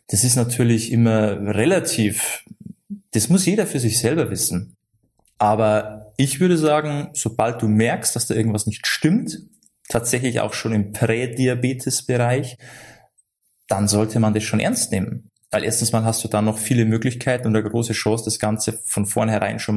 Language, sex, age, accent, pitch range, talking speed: German, male, 20-39, German, 110-135 Hz, 165 wpm